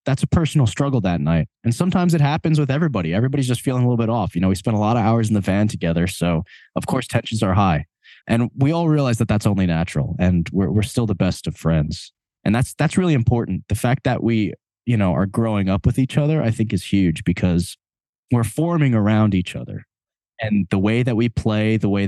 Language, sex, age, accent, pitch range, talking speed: English, male, 20-39, American, 95-120 Hz, 240 wpm